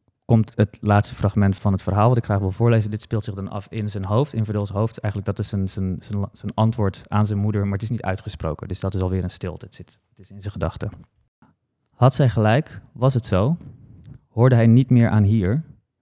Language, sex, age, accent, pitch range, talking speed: Dutch, male, 20-39, Dutch, 105-130 Hz, 235 wpm